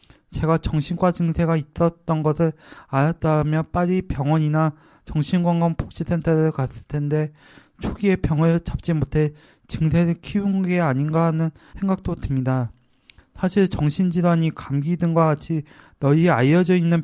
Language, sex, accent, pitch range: Korean, male, native, 150-170 Hz